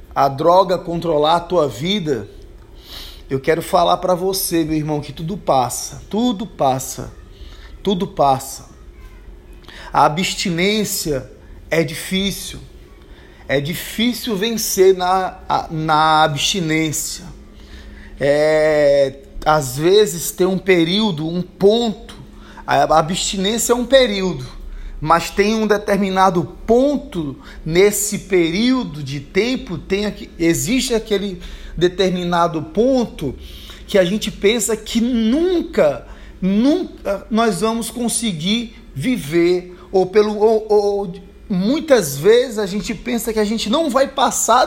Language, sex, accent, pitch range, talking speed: Portuguese, male, Brazilian, 155-215 Hz, 110 wpm